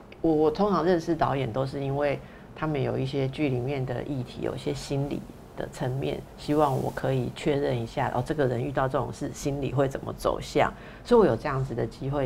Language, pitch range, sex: Chinese, 125-150 Hz, female